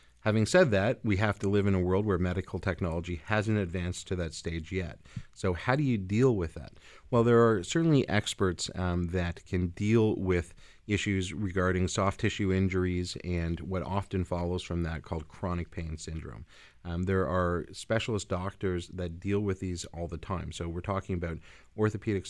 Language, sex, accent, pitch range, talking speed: English, male, American, 90-105 Hz, 185 wpm